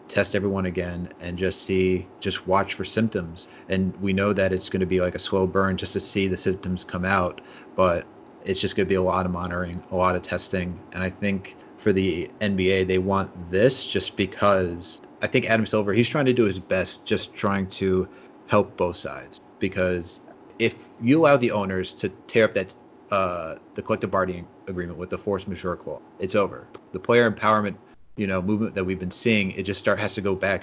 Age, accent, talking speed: 30-49, American, 210 wpm